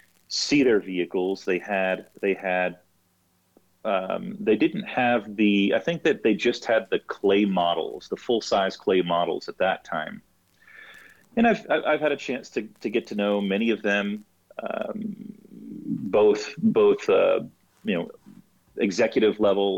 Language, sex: English, male